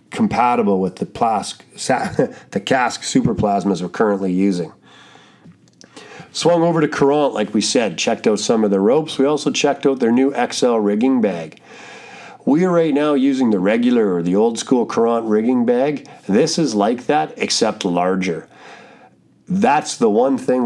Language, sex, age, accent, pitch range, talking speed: English, male, 40-59, American, 100-140 Hz, 165 wpm